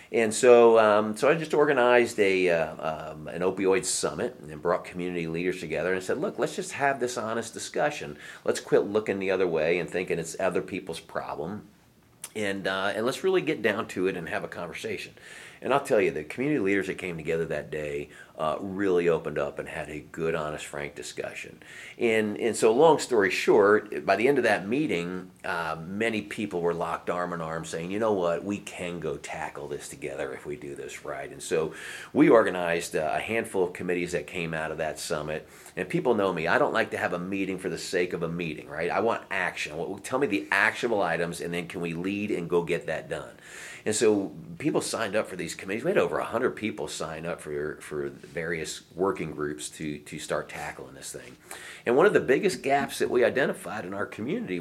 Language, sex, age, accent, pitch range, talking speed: English, male, 40-59, American, 85-115 Hz, 220 wpm